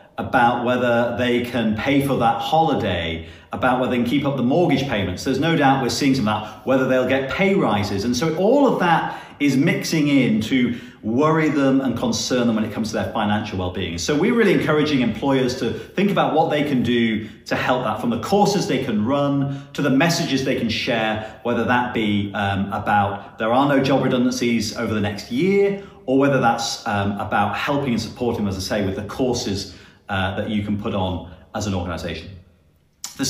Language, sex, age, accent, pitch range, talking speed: English, male, 40-59, British, 105-140 Hz, 210 wpm